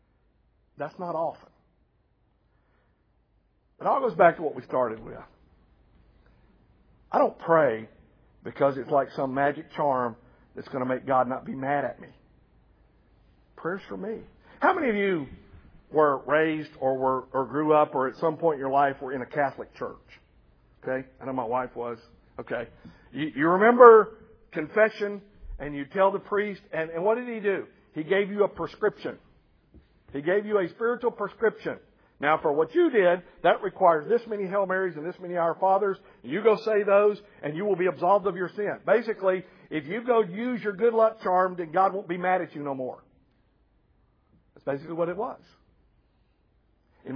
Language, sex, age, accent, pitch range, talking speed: English, male, 50-69, American, 150-205 Hz, 180 wpm